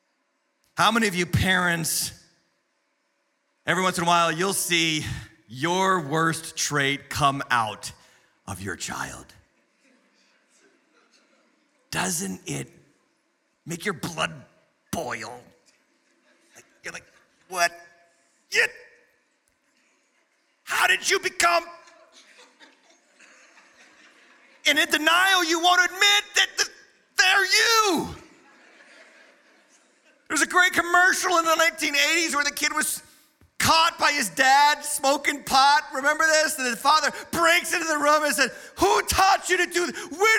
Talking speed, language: 115 wpm, English